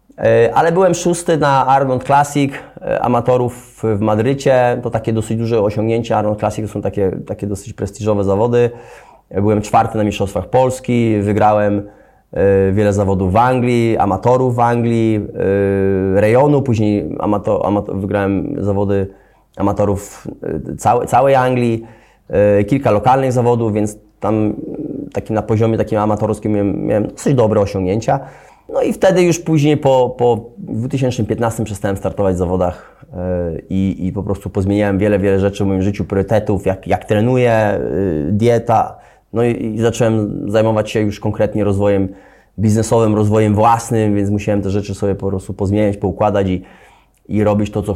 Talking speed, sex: 145 wpm, male